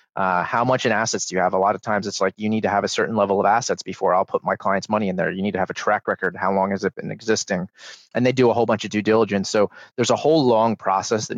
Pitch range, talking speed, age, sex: 100-115 Hz, 315 wpm, 30-49, male